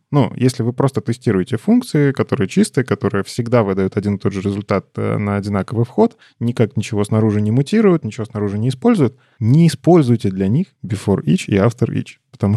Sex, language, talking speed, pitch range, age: male, Russian, 180 wpm, 105-135 Hz, 20-39